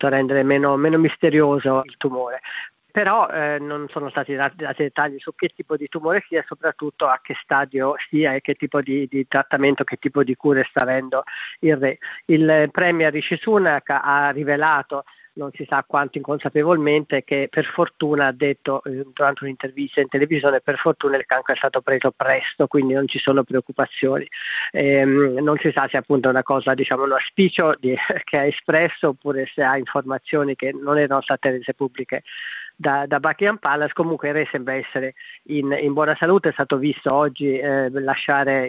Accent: native